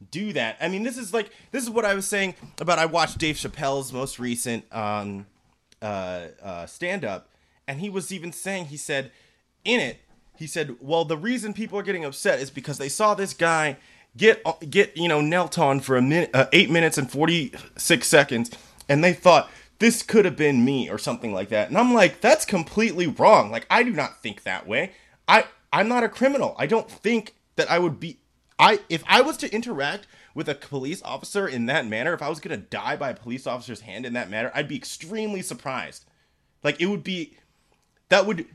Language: English